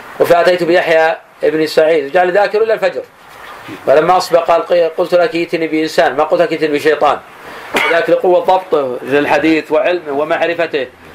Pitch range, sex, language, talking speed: 145-175 Hz, male, Arabic, 140 wpm